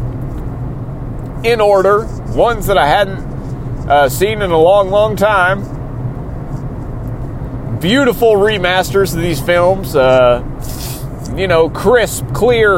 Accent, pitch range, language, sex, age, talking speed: American, 125-175 Hz, English, male, 30-49, 110 wpm